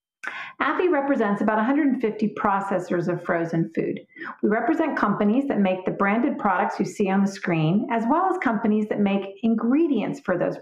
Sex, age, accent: female, 40-59, American